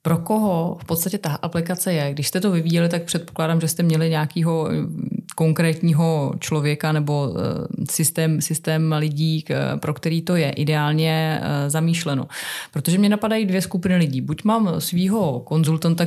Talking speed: 145 wpm